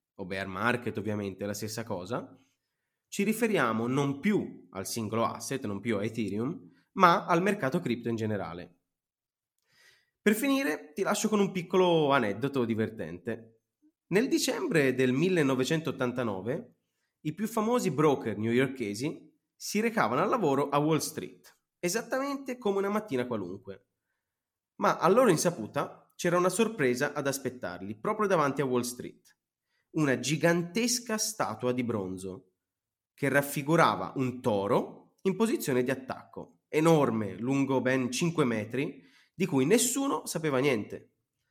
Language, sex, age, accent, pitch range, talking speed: Italian, male, 30-49, native, 115-175 Hz, 135 wpm